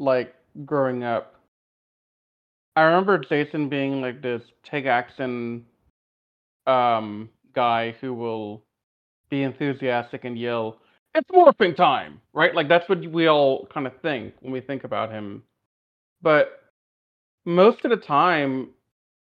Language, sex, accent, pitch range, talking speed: English, male, American, 110-145 Hz, 130 wpm